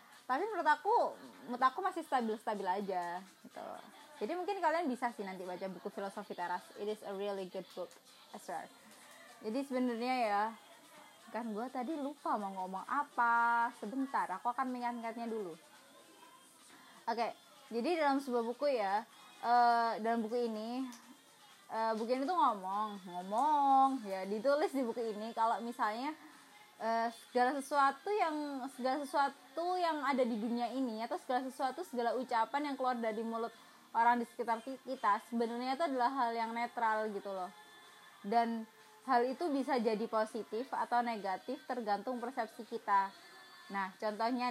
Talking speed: 150 wpm